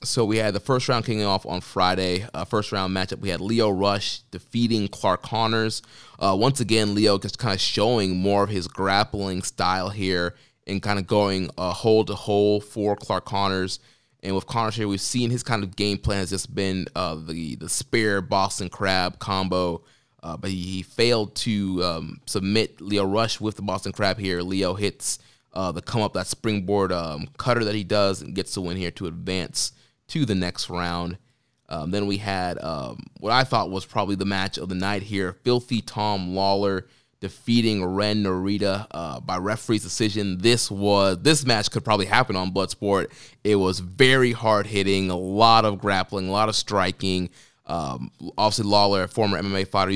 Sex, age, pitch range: male, 20-39, 95-110 Hz